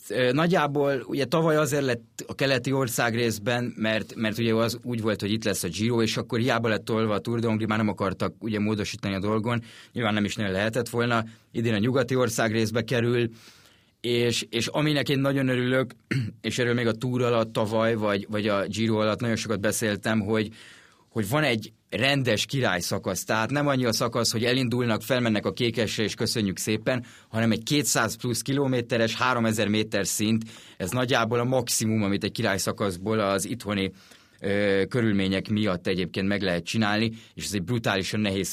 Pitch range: 105-125 Hz